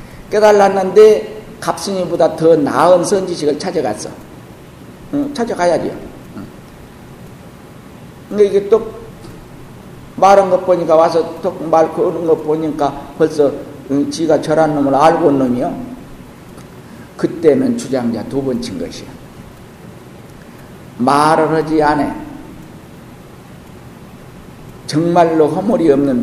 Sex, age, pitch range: male, 50-69, 155-205 Hz